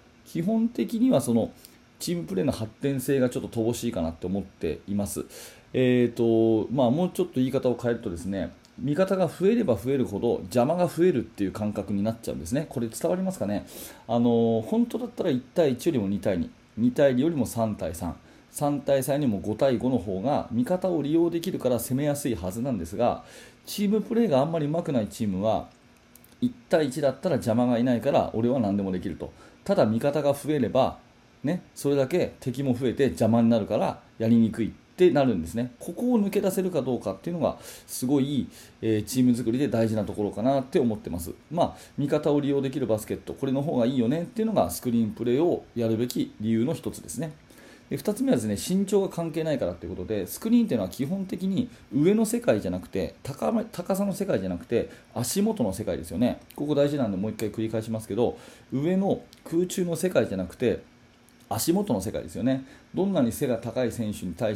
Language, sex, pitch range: Japanese, male, 115-180 Hz